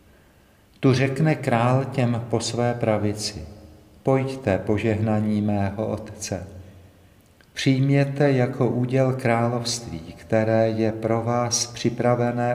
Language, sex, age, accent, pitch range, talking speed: Czech, male, 50-69, native, 105-120 Hz, 95 wpm